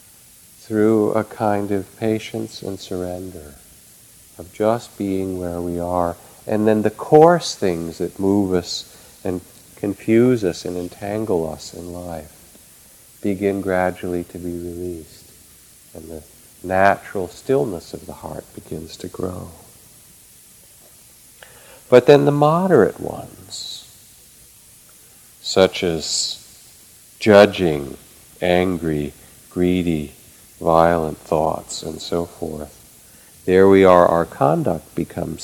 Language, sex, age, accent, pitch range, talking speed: English, male, 50-69, American, 85-110 Hz, 110 wpm